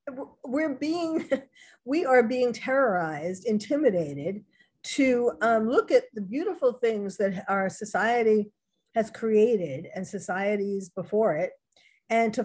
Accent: American